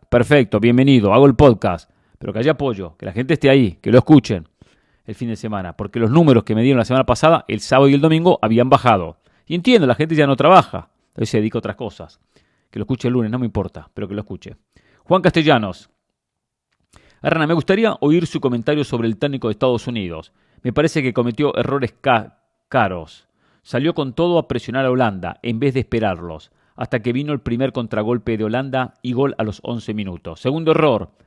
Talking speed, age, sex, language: 210 wpm, 40-59, male, English